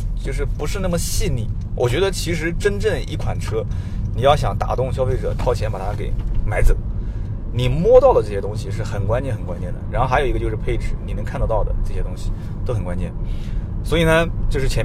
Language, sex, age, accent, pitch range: Chinese, male, 20-39, native, 100-120 Hz